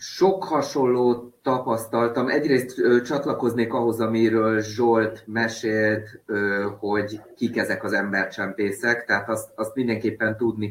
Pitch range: 100-115 Hz